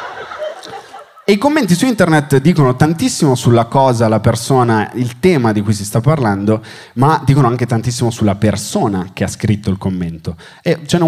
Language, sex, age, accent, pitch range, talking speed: Italian, male, 30-49, native, 105-140 Hz, 175 wpm